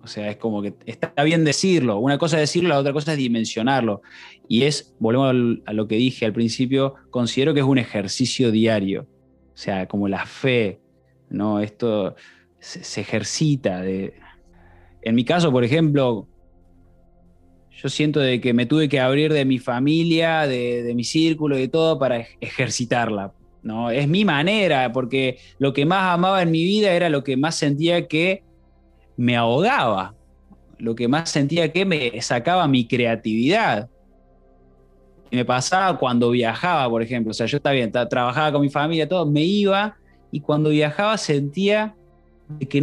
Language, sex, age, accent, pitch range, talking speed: Spanish, male, 20-39, Argentinian, 110-150 Hz, 170 wpm